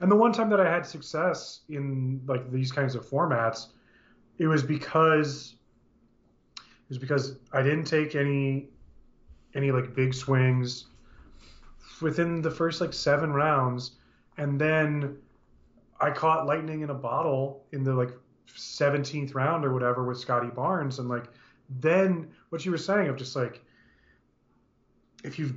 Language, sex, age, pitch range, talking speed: English, male, 30-49, 125-155 Hz, 150 wpm